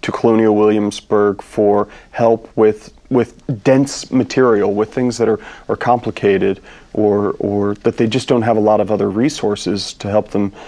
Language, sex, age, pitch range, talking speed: English, male, 40-59, 105-120 Hz, 170 wpm